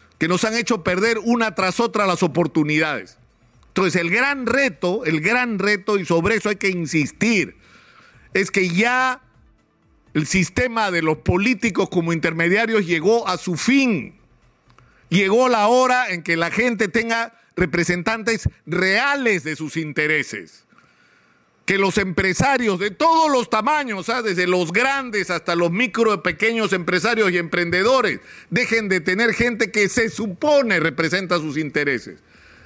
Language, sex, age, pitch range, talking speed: Spanish, male, 50-69, 180-235 Hz, 145 wpm